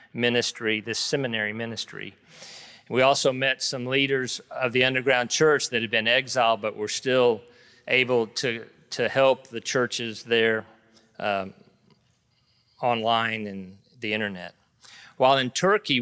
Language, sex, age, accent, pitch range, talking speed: English, male, 50-69, American, 115-135 Hz, 130 wpm